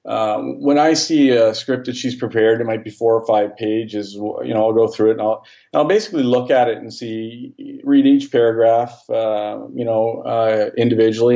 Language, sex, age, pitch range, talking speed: English, male, 40-59, 110-135 Hz, 205 wpm